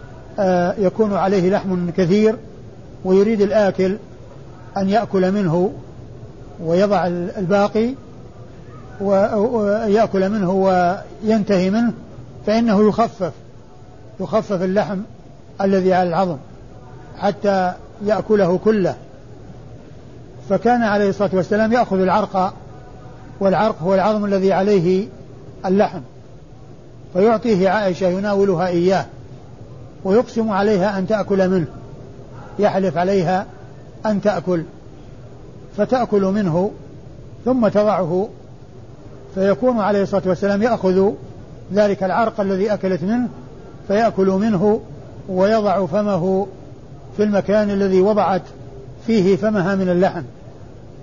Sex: male